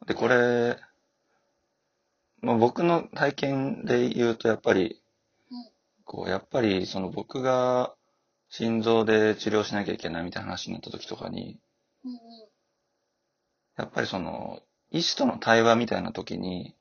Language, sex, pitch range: Japanese, male, 100-140 Hz